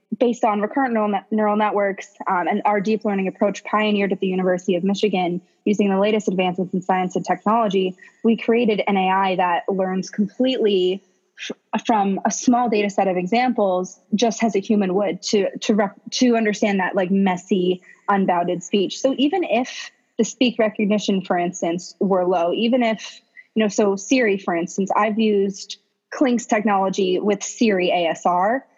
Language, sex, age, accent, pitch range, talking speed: English, female, 20-39, American, 190-230 Hz, 170 wpm